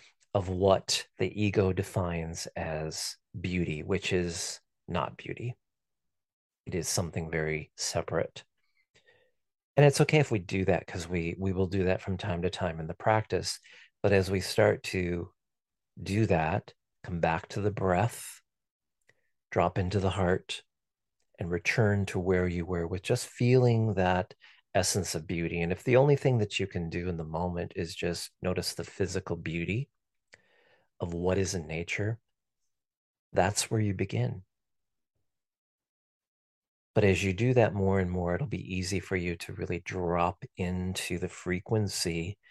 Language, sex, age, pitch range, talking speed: English, male, 40-59, 90-105 Hz, 155 wpm